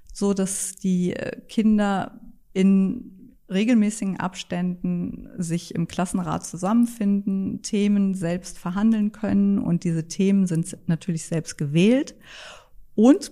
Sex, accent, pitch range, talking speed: female, German, 170-210 Hz, 105 wpm